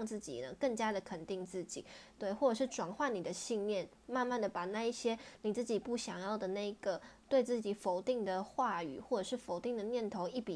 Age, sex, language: 20-39, female, Chinese